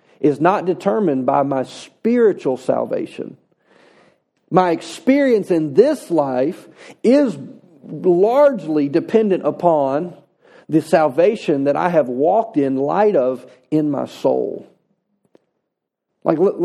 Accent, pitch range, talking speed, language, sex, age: American, 145-195 Hz, 110 wpm, English, male, 40-59